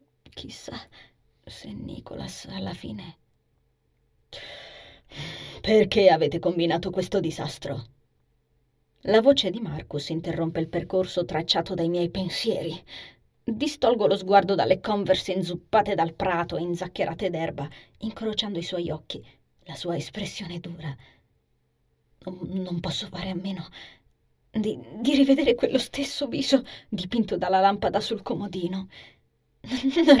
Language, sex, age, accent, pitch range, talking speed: Italian, female, 20-39, native, 175-275 Hz, 115 wpm